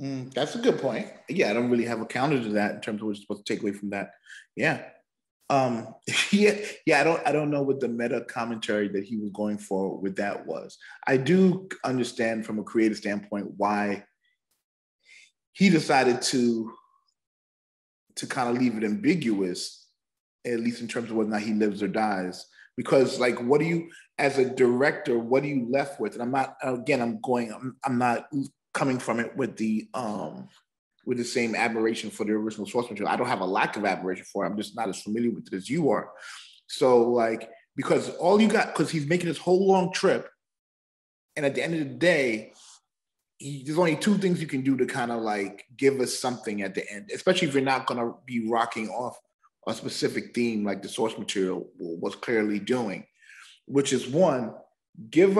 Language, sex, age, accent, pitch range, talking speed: English, male, 30-49, American, 110-140 Hz, 205 wpm